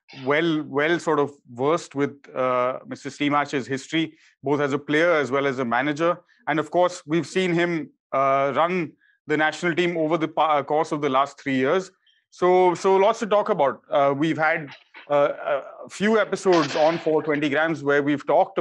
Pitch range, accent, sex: 140-170 Hz, Indian, male